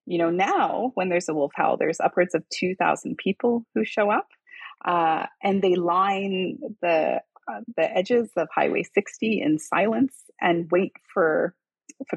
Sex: female